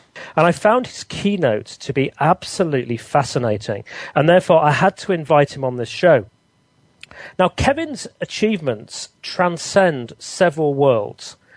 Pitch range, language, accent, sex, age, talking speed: 130-175 Hz, English, British, male, 40-59, 130 wpm